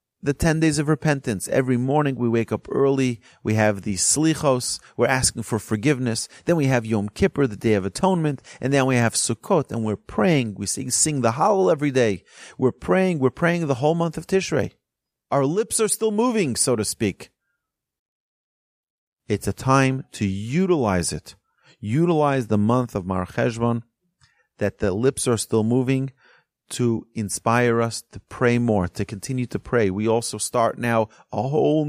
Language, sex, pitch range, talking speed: English, male, 110-140 Hz, 175 wpm